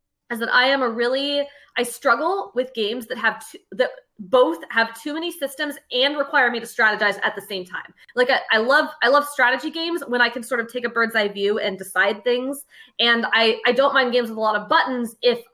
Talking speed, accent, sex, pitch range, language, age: 235 wpm, American, female, 220-275 Hz, English, 20-39